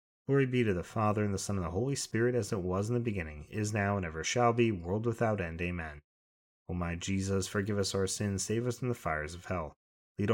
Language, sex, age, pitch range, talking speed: English, male, 30-49, 85-115 Hz, 255 wpm